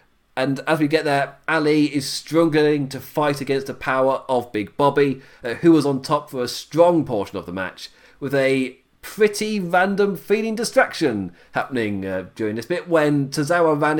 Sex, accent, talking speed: male, British, 180 wpm